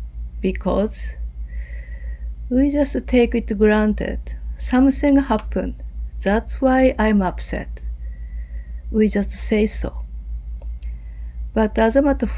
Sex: female